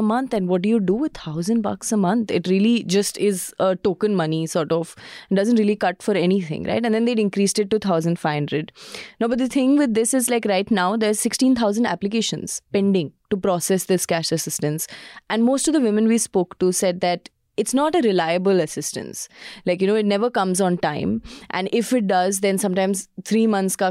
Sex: female